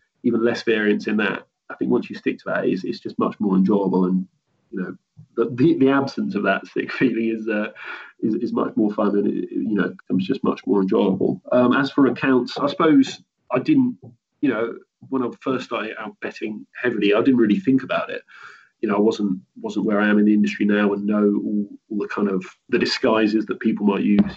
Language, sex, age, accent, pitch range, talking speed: English, male, 30-49, British, 105-130 Hz, 225 wpm